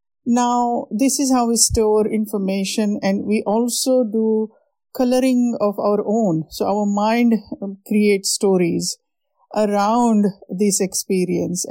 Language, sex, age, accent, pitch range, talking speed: English, female, 50-69, Indian, 195-235 Hz, 120 wpm